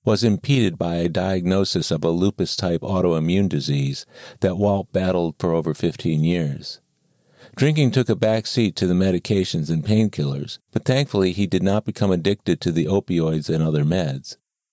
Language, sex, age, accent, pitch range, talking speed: English, male, 50-69, American, 85-110 Hz, 160 wpm